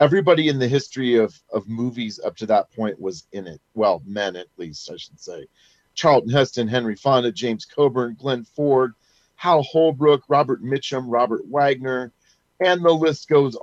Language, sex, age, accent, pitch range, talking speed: English, male, 40-59, American, 105-135 Hz, 170 wpm